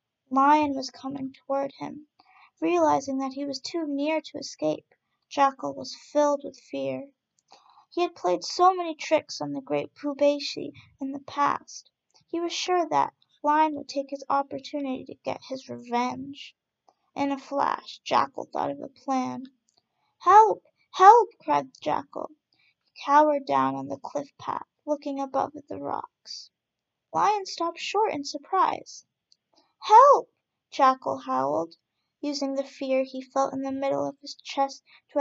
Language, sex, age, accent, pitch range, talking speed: English, female, 30-49, American, 270-345 Hz, 150 wpm